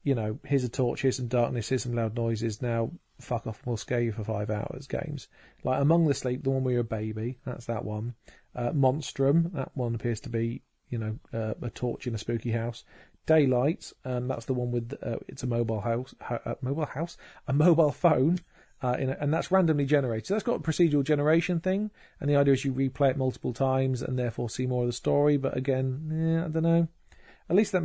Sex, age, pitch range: male, 40-59, 120-145 Hz